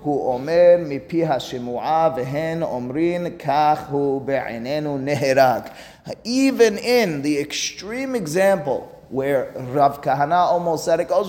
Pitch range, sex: 125-165 Hz, male